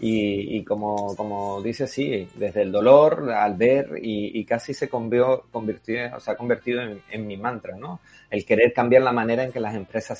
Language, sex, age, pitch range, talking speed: Spanish, male, 30-49, 105-130 Hz, 200 wpm